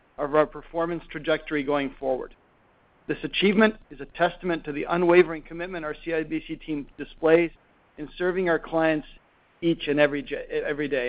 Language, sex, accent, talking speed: English, male, American, 150 wpm